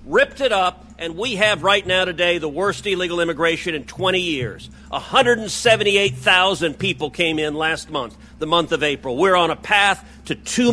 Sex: male